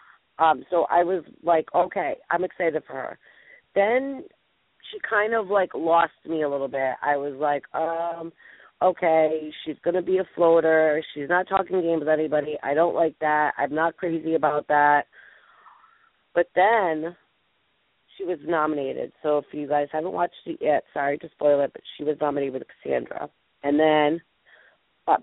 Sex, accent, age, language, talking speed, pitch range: female, American, 30-49, English, 170 wpm, 150-195 Hz